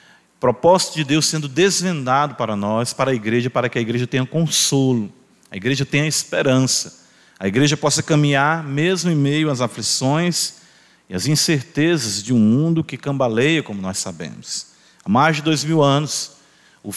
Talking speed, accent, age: 165 wpm, Brazilian, 40-59